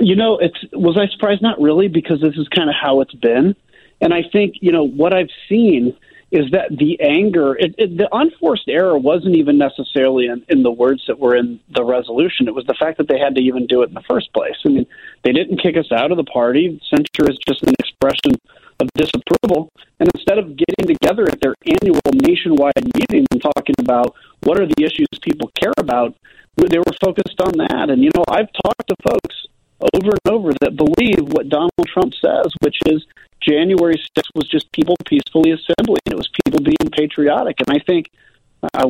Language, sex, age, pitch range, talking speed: English, male, 40-59, 145-230 Hz, 205 wpm